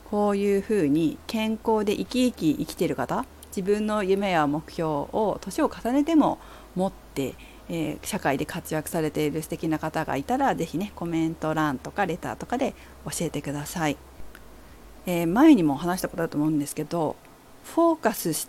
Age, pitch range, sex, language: 40-59, 165-250 Hz, female, Japanese